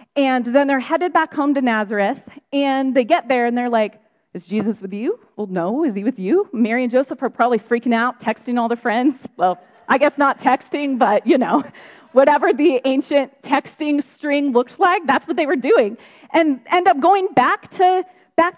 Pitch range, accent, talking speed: 235-320 Hz, American, 205 wpm